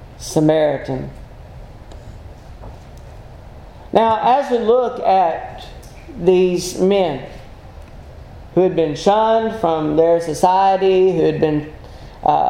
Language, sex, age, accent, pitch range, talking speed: English, male, 40-59, American, 165-210 Hz, 90 wpm